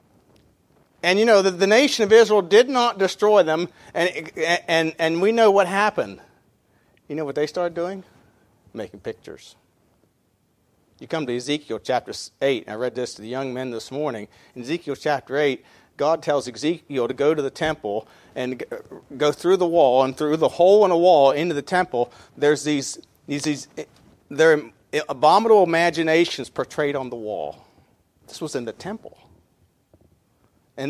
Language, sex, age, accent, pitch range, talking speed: English, male, 40-59, American, 145-200 Hz, 165 wpm